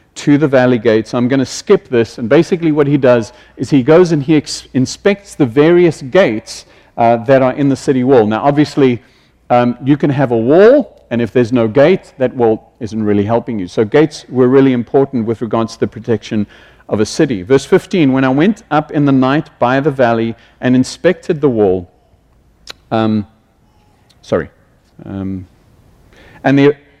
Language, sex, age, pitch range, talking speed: English, male, 50-69, 115-155 Hz, 180 wpm